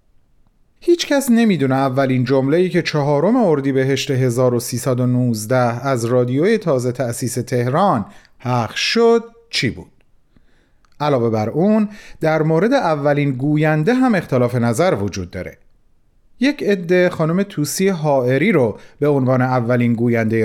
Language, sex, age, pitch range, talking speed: Persian, male, 40-59, 125-205 Hz, 130 wpm